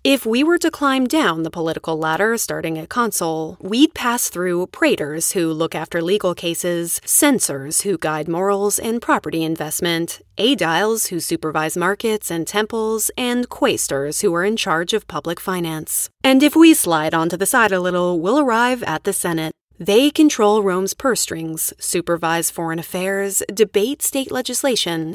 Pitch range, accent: 165-240 Hz, American